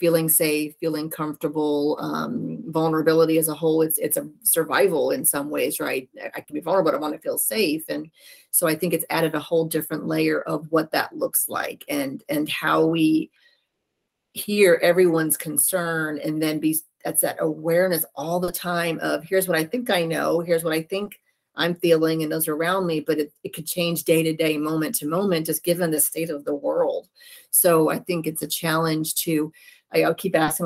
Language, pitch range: English, 155-175 Hz